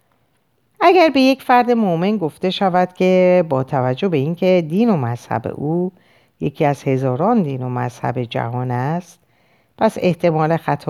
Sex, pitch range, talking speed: female, 130-190 Hz, 150 wpm